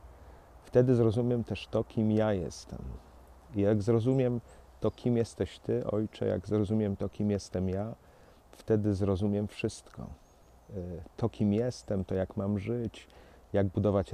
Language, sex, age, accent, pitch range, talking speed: Polish, male, 40-59, native, 90-110 Hz, 140 wpm